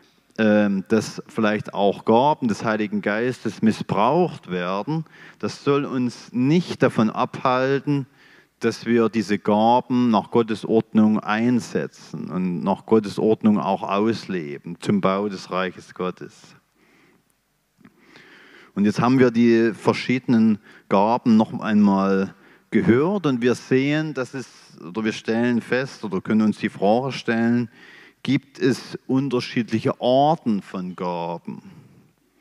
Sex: male